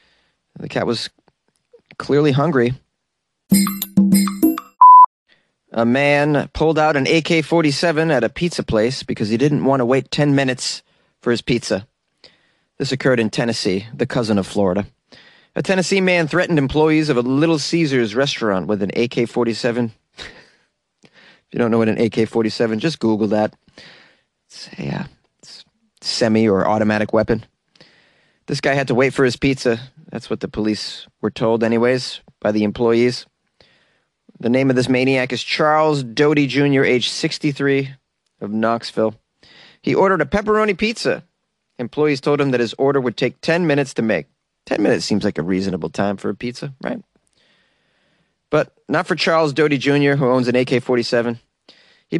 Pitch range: 115-155 Hz